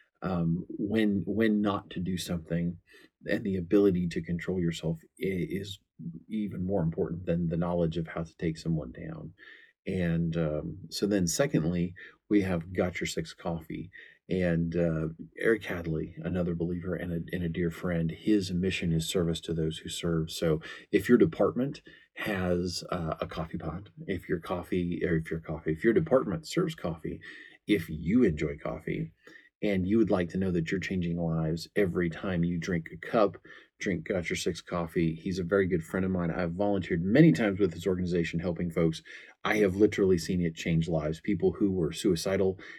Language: English